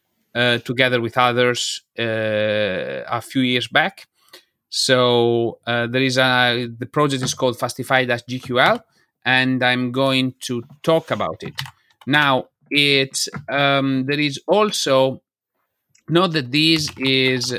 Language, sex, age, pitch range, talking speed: English, male, 30-49, 125-140 Hz, 125 wpm